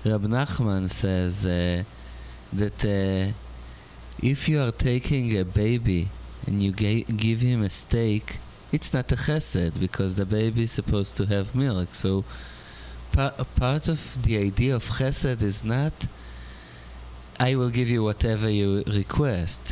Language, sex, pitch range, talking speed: English, male, 85-115 Hz, 150 wpm